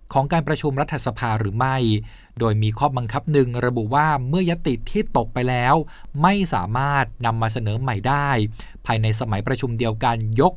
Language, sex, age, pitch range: Thai, male, 20-39, 115-155 Hz